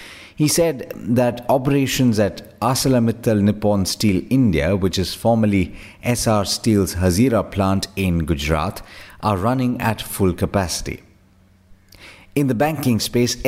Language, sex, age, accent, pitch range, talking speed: English, male, 50-69, Indian, 95-120 Hz, 120 wpm